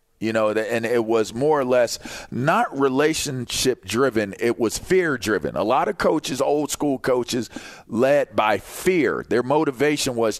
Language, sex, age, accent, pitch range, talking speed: English, male, 40-59, American, 120-160 Hz, 160 wpm